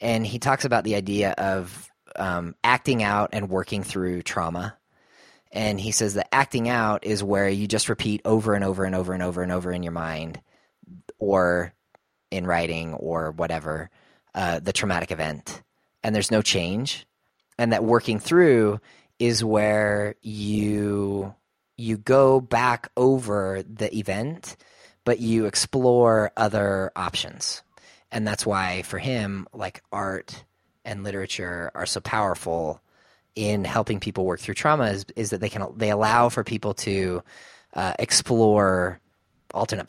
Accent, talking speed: American, 145 wpm